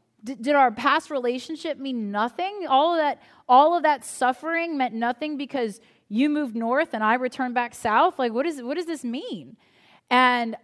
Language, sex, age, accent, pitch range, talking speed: English, female, 30-49, American, 230-310 Hz, 180 wpm